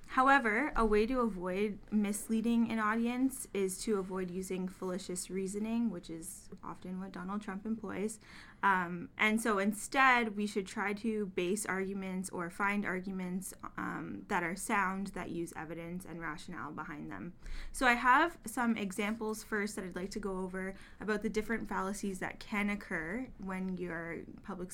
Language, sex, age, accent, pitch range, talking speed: English, female, 20-39, American, 185-220 Hz, 165 wpm